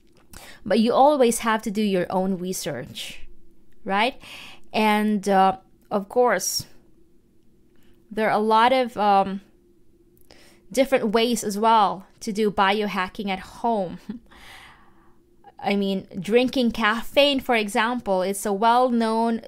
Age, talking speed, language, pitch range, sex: 20-39, 120 wpm, English, 200-245 Hz, female